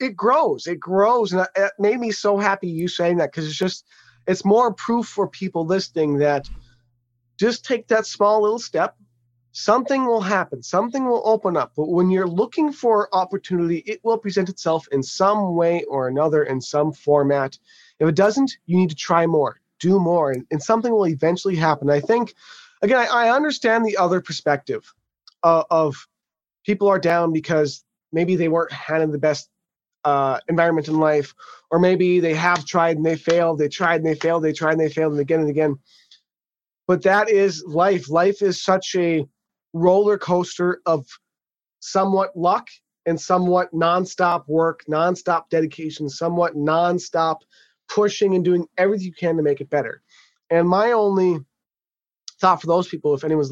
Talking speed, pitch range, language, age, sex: 175 wpm, 155-195 Hz, English, 30-49, male